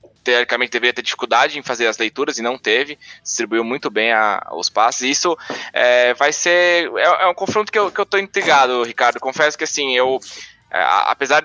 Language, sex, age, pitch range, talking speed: English, male, 20-39, 120-165 Hz, 195 wpm